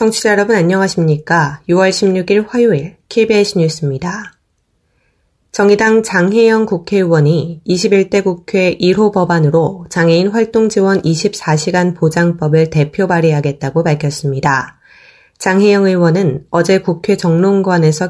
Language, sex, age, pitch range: Korean, female, 20-39, 160-195 Hz